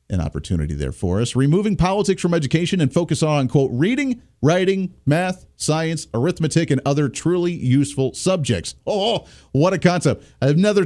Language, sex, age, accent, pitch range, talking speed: English, male, 40-59, American, 115-165 Hz, 155 wpm